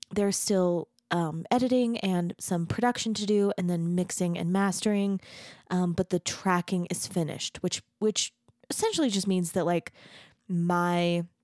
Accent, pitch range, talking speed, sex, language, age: American, 170-200 Hz, 145 wpm, female, English, 20-39